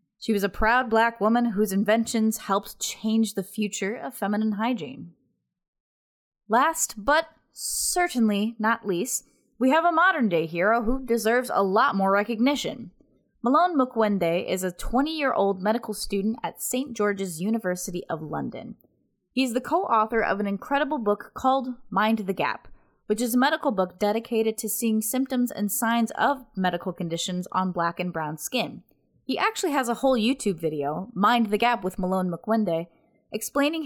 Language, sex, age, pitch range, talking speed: English, female, 20-39, 195-240 Hz, 155 wpm